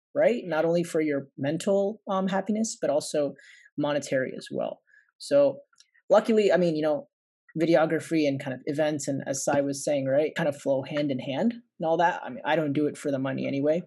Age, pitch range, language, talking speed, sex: 30-49, 140-175 Hz, Telugu, 210 wpm, male